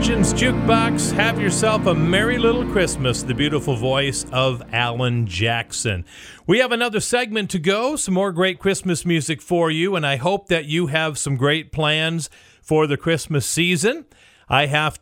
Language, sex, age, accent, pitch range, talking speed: English, male, 50-69, American, 130-180 Hz, 165 wpm